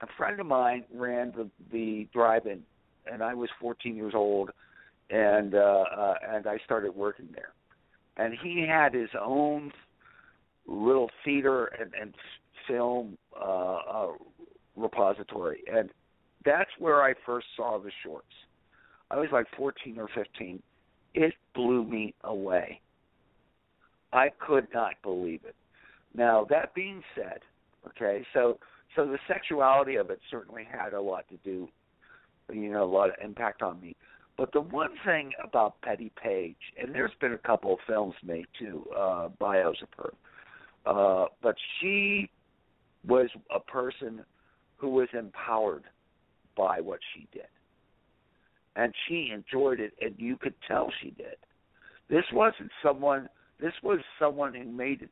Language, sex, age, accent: English, male, 50-69, American